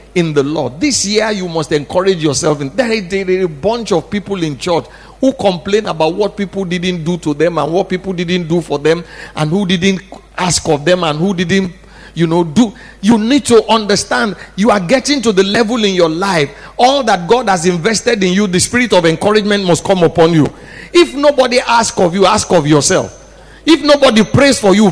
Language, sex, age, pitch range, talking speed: English, male, 50-69, 185-250 Hz, 205 wpm